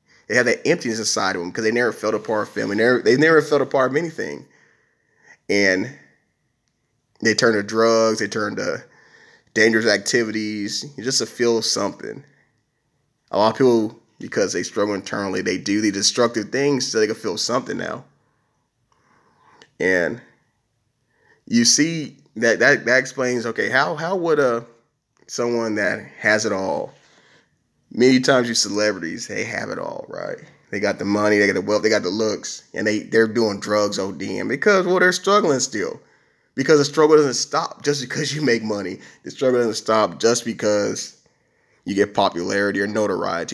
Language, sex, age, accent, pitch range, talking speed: English, male, 30-49, American, 105-125 Hz, 175 wpm